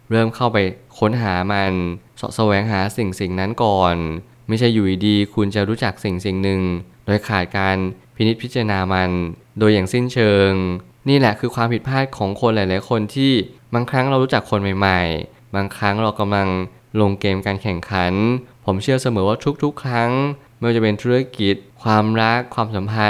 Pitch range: 100-120 Hz